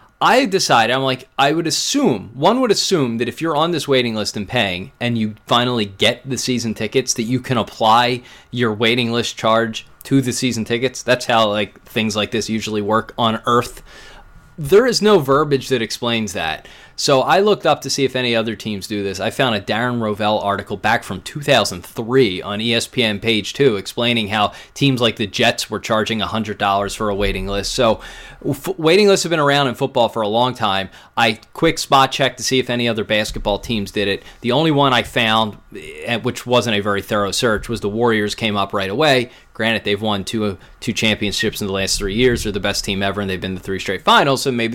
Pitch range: 105-130 Hz